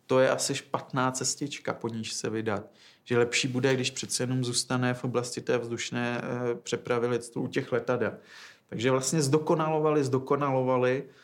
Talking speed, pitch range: 150 wpm, 120-130 Hz